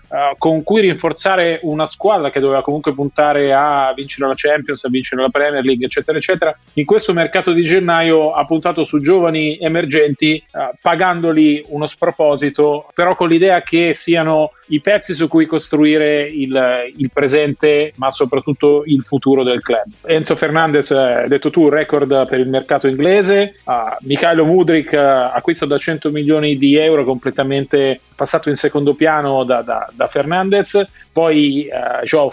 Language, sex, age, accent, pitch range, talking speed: Italian, male, 30-49, native, 140-165 Hz, 155 wpm